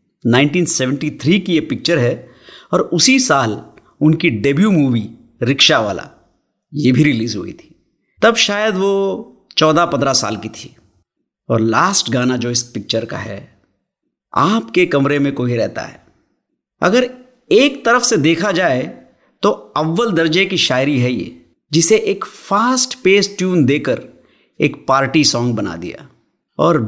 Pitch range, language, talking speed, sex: 120-170 Hz, Hindi, 150 wpm, male